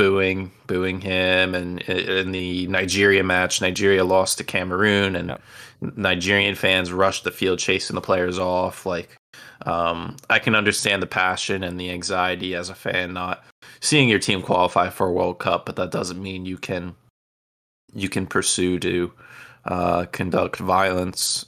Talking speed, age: 160 wpm, 20-39